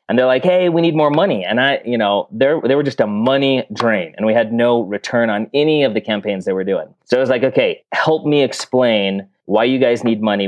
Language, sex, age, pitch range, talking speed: English, male, 30-49, 115-165 Hz, 260 wpm